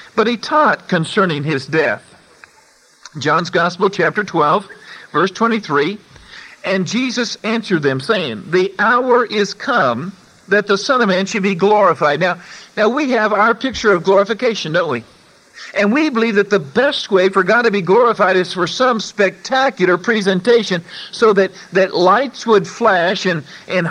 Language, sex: English, male